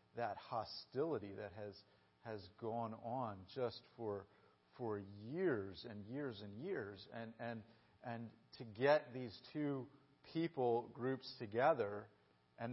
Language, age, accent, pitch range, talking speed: English, 40-59, American, 110-145 Hz, 125 wpm